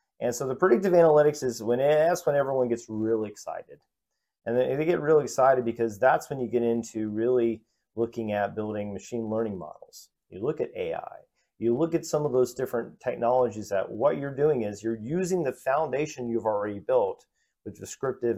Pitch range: 110-150 Hz